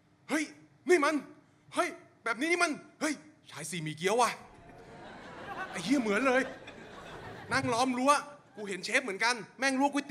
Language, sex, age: Thai, male, 20-39